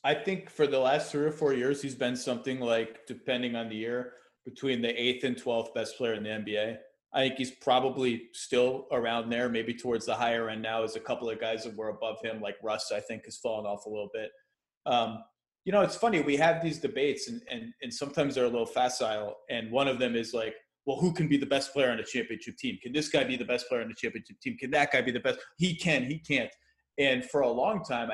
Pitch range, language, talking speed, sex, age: 120-150 Hz, English, 255 wpm, male, 30-49